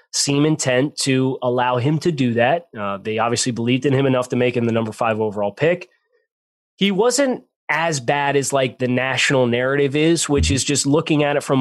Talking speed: 205 wpm